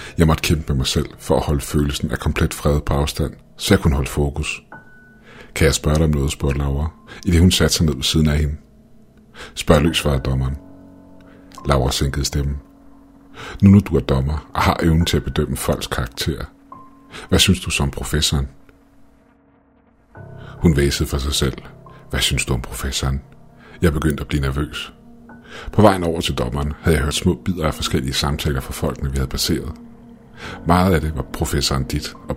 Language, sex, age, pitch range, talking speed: Danish, male, 50-69, 70-90 Hz, 190 wpm